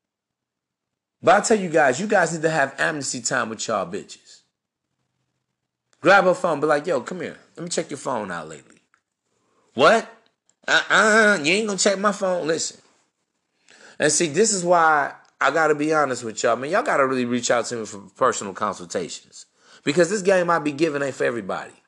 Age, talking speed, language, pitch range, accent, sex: 30-49, 200 wpm, English, 145-195 Hz, American, male